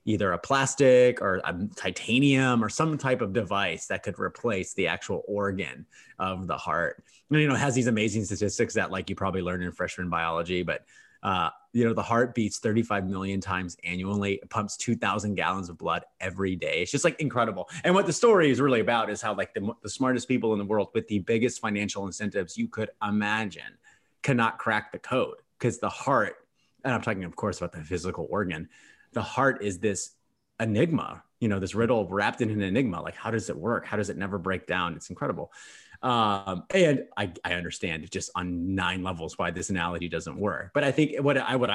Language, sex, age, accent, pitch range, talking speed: English, male, 30-49, American, 95-125 Hz, 210 wpm